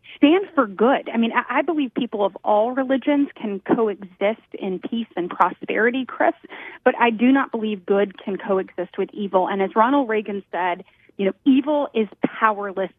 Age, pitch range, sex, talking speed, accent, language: 30-49, 195-255 Hz, female, 175 wpm, American, English